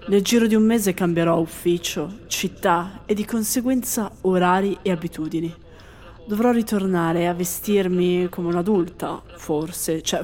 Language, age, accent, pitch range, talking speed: Italian, 20-39, native, 180-240 Hz, 130 wpm